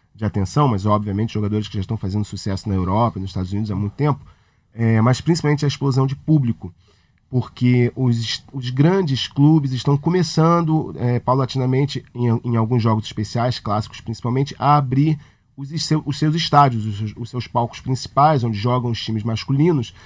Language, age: Portuguese, 40-59